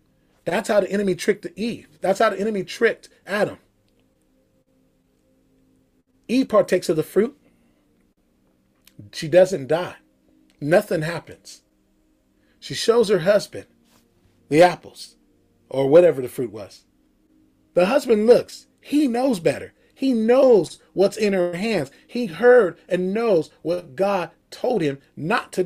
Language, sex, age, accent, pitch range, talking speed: English, male, 30-49, American, 150-220 Hz, 130 wpm